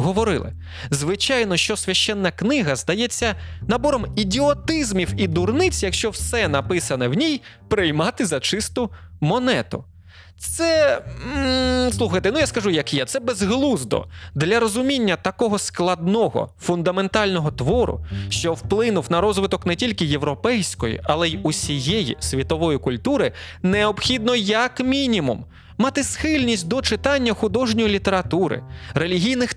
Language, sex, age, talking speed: Ukrainian, male, 20-39, 115 wpm